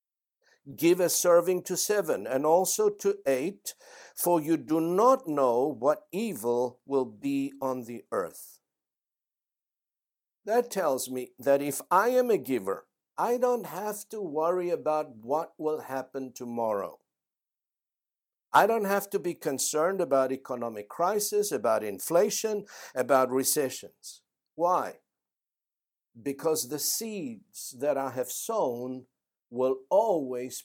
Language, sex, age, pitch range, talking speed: English, male, 60-79, 130-200 Hz, 125 wpm